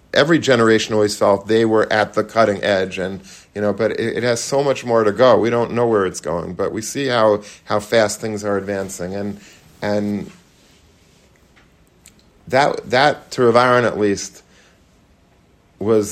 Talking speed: 170 wpm